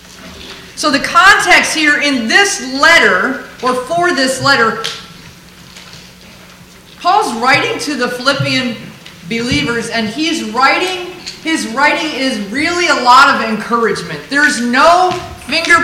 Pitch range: 225-295 Hz